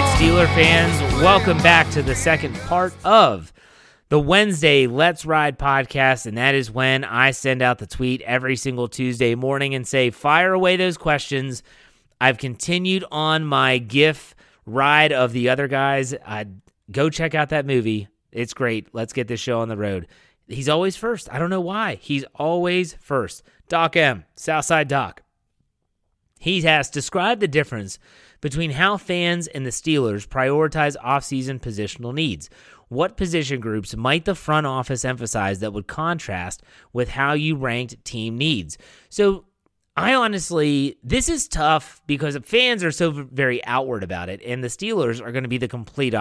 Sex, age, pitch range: male, 30-49, 125-160 Hz